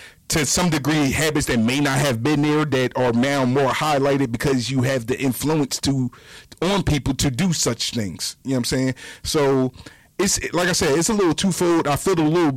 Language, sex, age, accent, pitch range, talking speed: English, male, 30-49, American, 145-195 Hz, 215 wpm